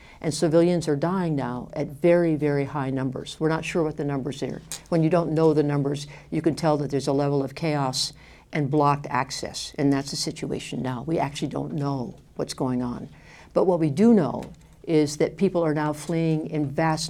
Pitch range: 145-170 Hz